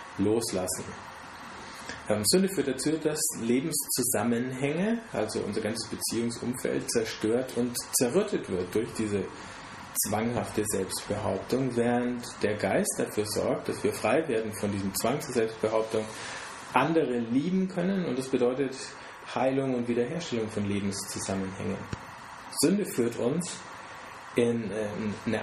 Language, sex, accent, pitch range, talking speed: German, male, German, 105-125 Hz, 115 wpm